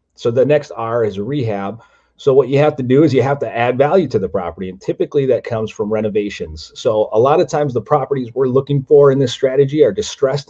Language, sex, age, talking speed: English, male, 30-49, 245 wpm